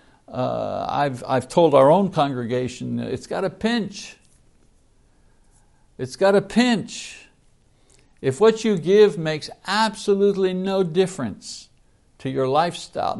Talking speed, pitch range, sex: 120 wpm, 135-200 Hz, male